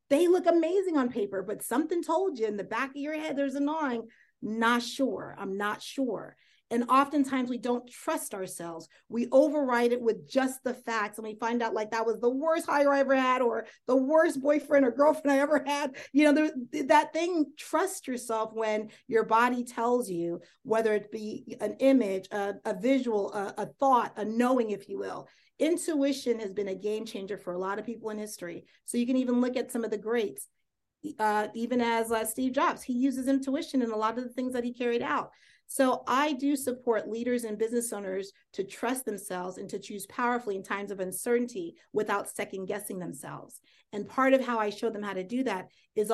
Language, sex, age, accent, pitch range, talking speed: English, female, 40-59, American, 210-270 Hz, 210 wpm